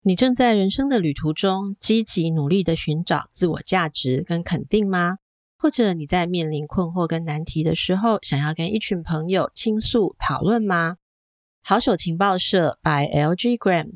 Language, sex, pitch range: Chinese, female, 160-220 Hz